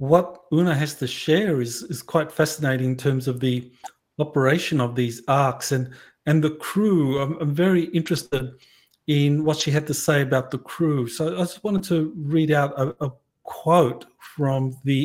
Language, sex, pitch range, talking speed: English, male, 135-160 Hz, 185 wpm